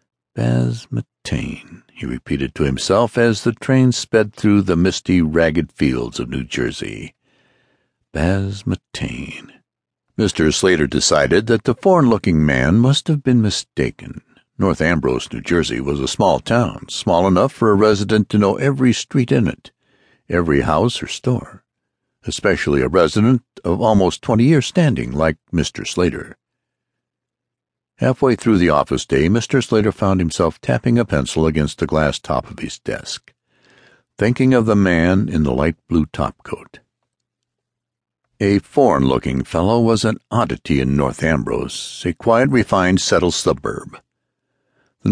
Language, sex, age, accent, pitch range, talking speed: English, male, 60-79, American, 80-115 Hz, 140 wpm